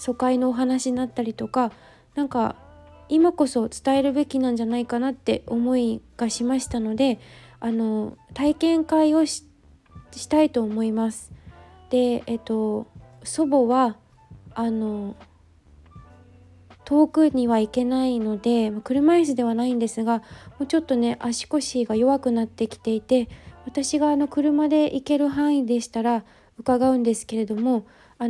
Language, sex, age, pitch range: Japanese, female, 20-39, 230-275 Hz